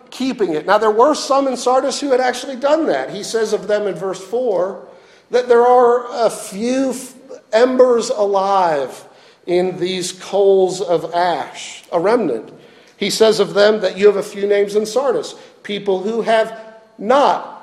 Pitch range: 190-260 Hz